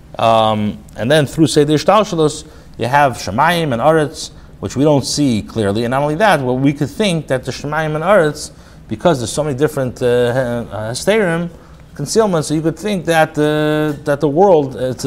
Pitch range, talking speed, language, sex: 105-150 Hz, 190 wpm, English, male